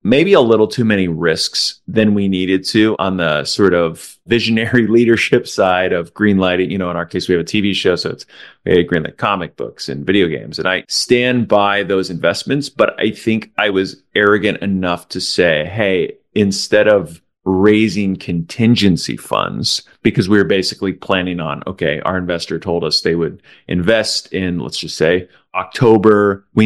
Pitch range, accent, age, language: 90-110 Hz, American, 30-49, English